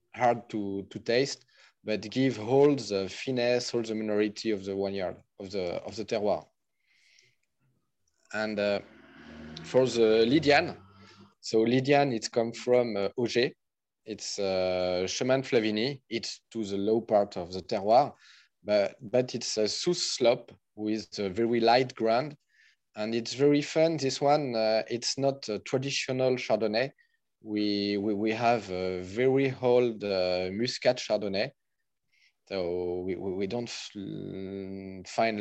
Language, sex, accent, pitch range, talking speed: English, male, French, 100-125 Hz, 140 wpm